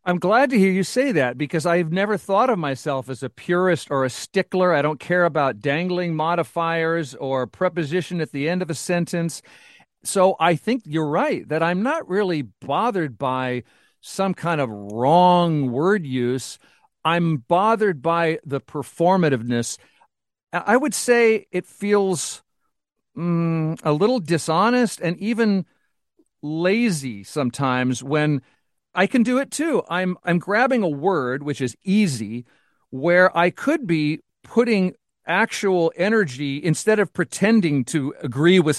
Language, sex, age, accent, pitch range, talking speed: English, male, 50-69, American, 140-190 Hz, 145 wpm